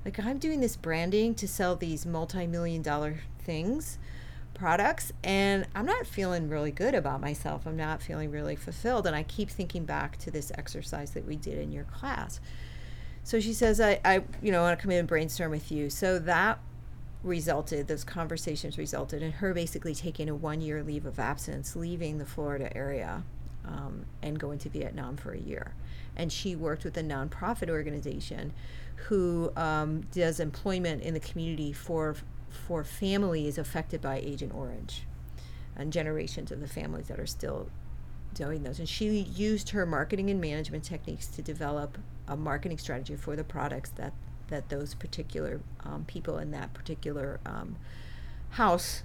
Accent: American